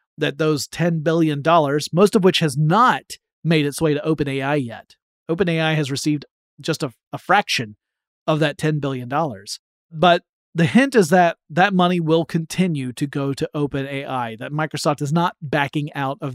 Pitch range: 145-175 Hz